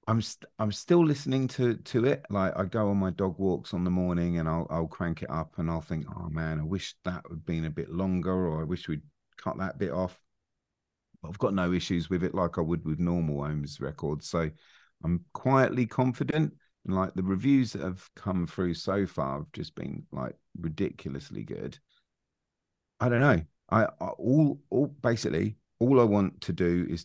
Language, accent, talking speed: English, British, 205 wpm